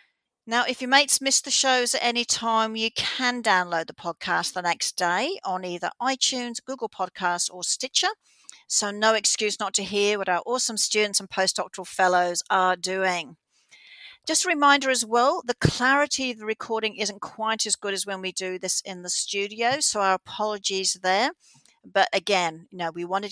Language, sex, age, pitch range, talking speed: English, female, 50-69, 185-245 Hz, 185 wpm